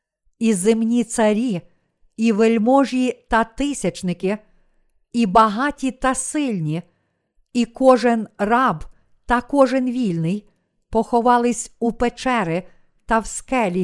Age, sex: 50-69, female